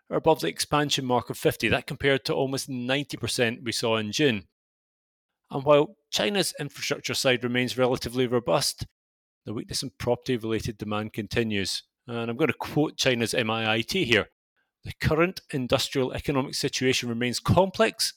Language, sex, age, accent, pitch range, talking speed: English, male, 30-49, British, 115-140 Hz, 150 wpm